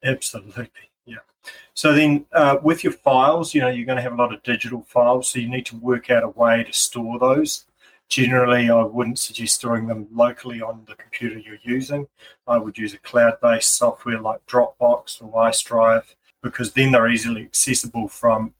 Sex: male